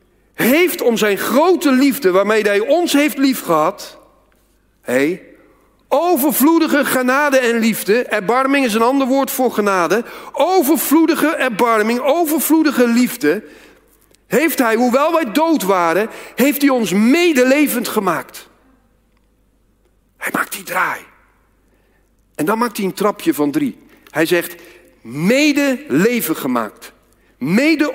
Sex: male